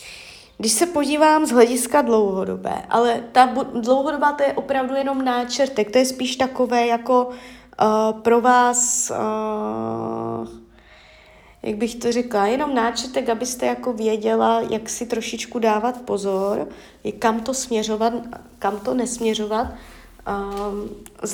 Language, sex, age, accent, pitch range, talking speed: Czech, female, 20-39, native, 200-250 Hz, 120 wpm